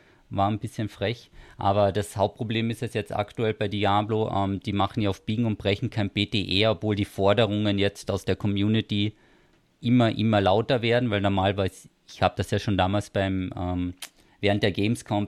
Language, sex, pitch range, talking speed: German, male, 95-110 Hz, 185 wpm